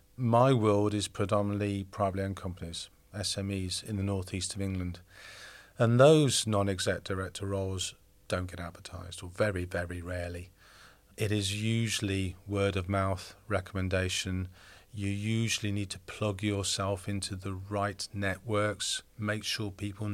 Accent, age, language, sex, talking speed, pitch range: British, 40-59, English, male, 135 wpm, 95-110 Hz